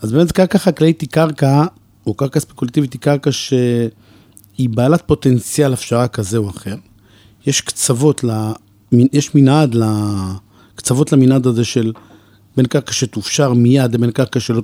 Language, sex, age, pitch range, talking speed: Hebrew, male, 40-59, 110-145 Hz, 145 wpm